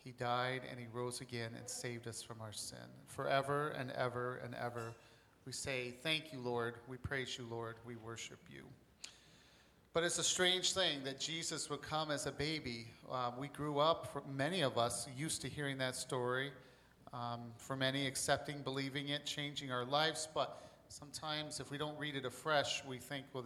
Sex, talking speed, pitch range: male, 185 wpm, 125-150 Hz